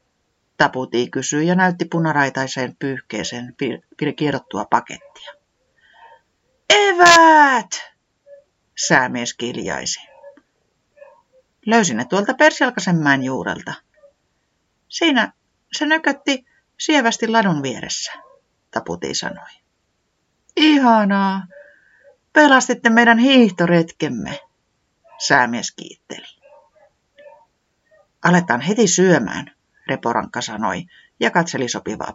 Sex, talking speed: female, 75 wpm